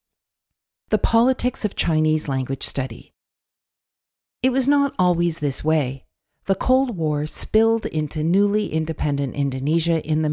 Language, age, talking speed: English, 50-69, 130 wpm